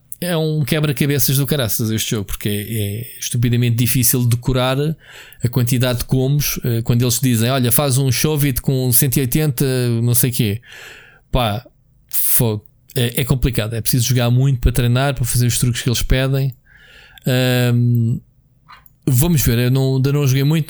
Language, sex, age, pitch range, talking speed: Portuguese, male, 20-39, 115-135 Hz, 155 wpm